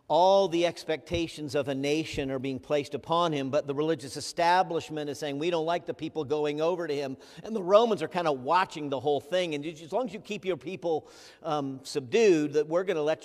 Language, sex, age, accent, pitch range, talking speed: English, male, 50-69, American, 120-150 Hz, 230 wpm